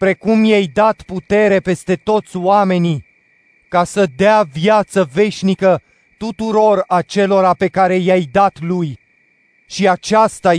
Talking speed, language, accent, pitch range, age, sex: 120 wpm, Romanian, native, 155-200 Hz, 30-49, male